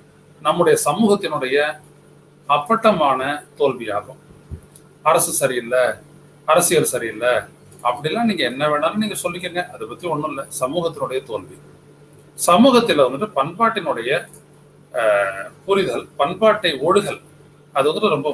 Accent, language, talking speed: native, Tamil, 90 wpm